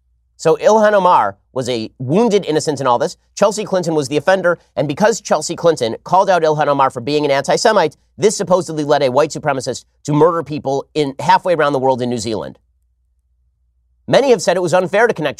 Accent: American